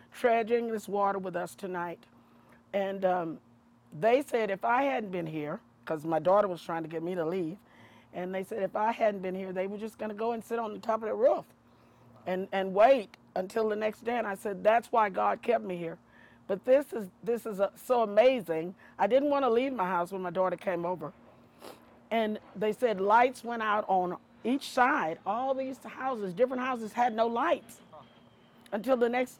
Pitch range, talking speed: 185-240 Hz, 210 wpm